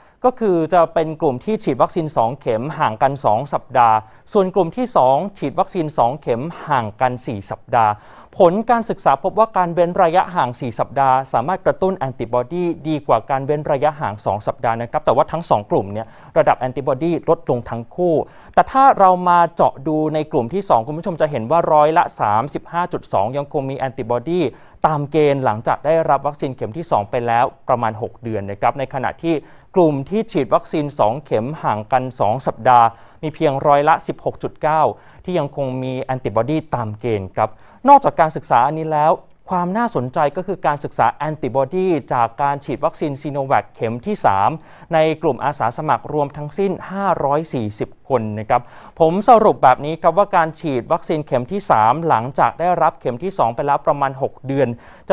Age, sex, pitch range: 30-49, male, 125-170 Hz